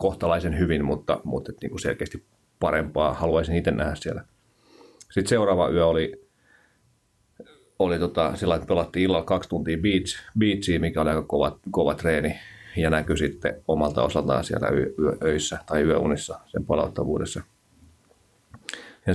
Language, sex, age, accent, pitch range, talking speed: Finnish, male, 30-49, native, 80-95 Hz, 145 wpm